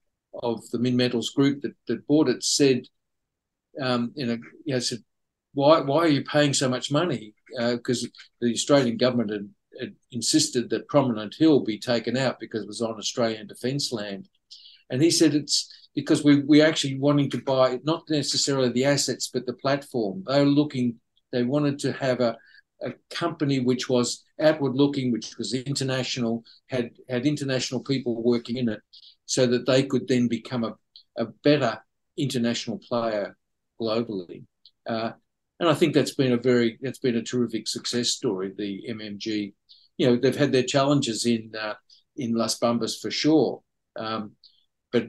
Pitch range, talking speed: 115-135 Hz, 170 wpm